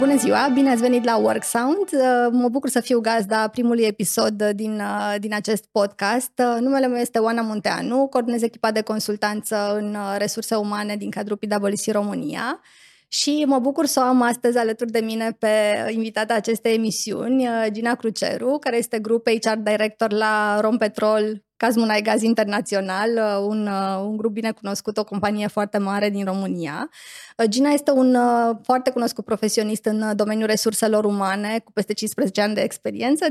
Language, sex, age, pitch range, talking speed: Romanian, female, 20-39, 215-245 Hz, 155 wpm